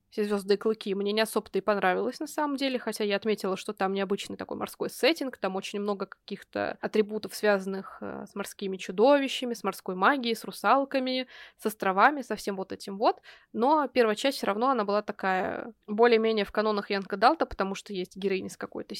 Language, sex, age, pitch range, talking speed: Russian, female, 20-39, 195-235 Hz, 190 wpm